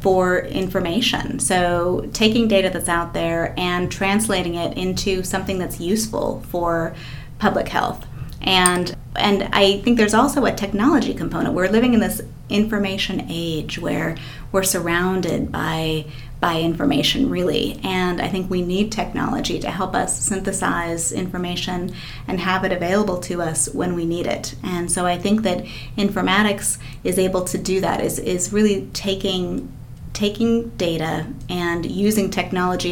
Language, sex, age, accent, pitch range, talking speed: English, female, 30-49, American, 170-195 Hz, 150 wpm